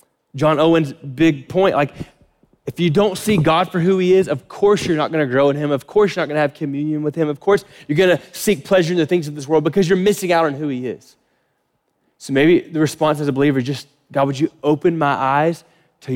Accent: American